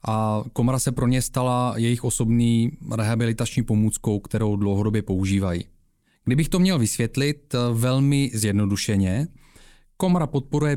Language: Czech